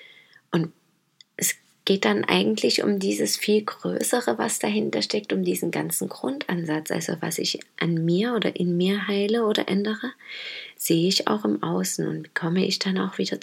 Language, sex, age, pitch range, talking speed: German, female, 20-39, 170-205 Hz, 170 wpm